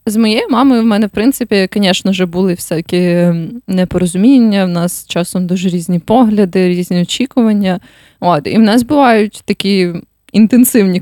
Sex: female